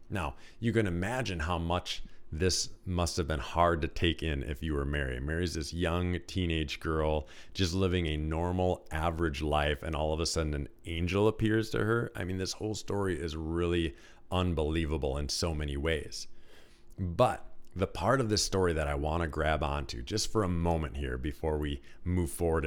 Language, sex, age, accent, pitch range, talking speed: English, male, 40-59, American, 75-95 Hz, 190 wpm